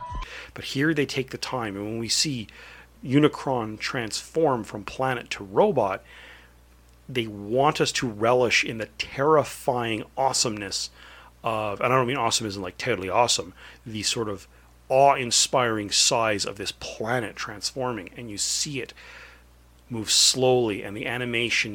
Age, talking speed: 40-59, 150 wpm